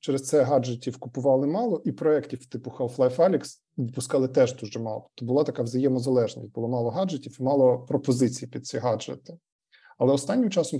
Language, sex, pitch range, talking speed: Ukrainian, male, 125-145 Hz, 160 wpm